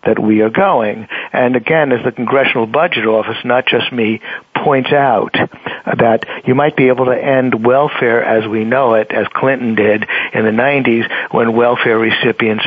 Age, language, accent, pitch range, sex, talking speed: 60-79, English, American, 110-125 Hz, male, 175 wpm